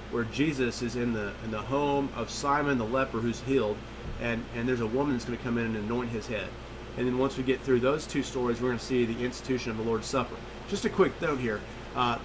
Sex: male